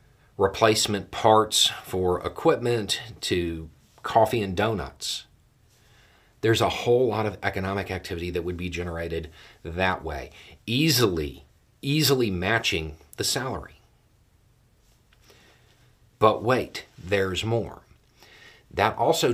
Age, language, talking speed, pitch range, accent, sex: 40-59, English, 100 wpm, 90-115 Hz, American, male